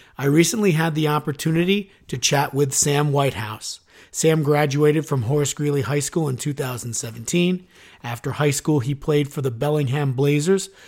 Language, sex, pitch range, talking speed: English, male, 130-155 Hz, 155 wpm